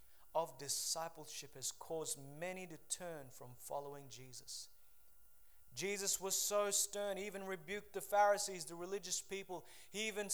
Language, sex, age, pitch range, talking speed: English, male, 20-39, 195-265 Hz, 140 wpm